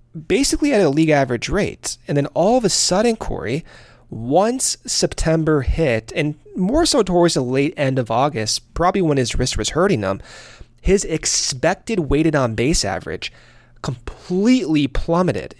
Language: English